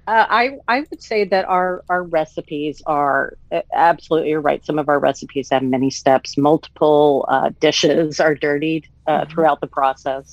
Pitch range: 140-175 Hz